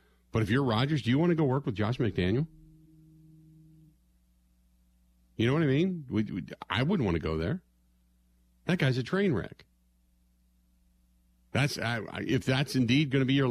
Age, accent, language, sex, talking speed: 50-69, American, English, male, 180 wpm